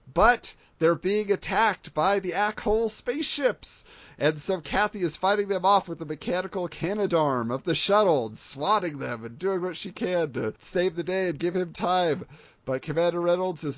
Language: English